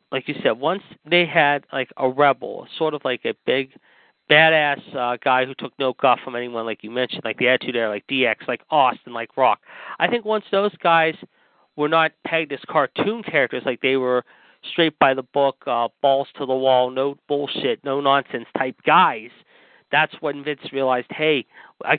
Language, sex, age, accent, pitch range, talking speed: English, male, 40-59, American, 130-160 Hz, 195 wpm